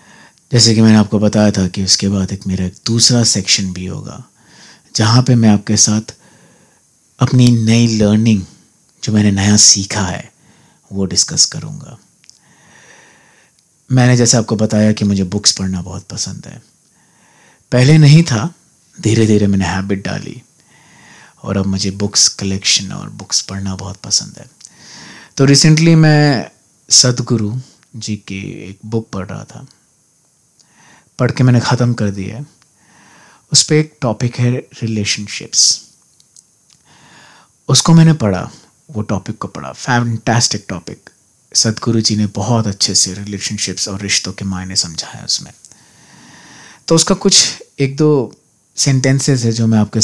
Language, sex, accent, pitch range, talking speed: Hindi, male, native, 100-125 Hz, 135 wpm